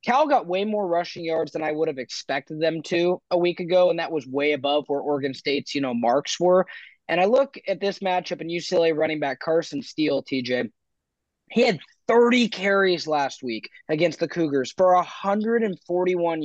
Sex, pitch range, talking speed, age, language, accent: male, 160-200 Hz, 190 wpm, 20-39, English, American